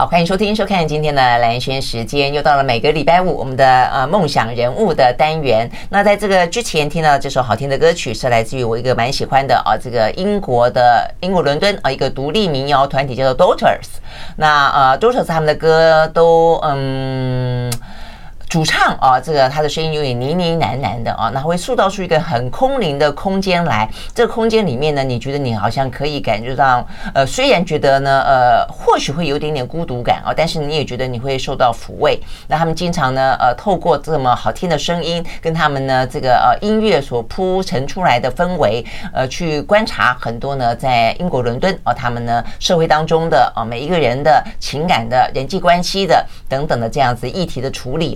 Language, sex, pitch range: Chinese, female, 130-170 Hz